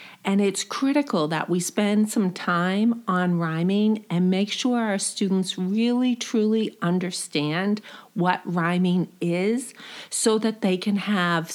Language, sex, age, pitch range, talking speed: English, female, 40-59, 180-235 Hz, 135 wpm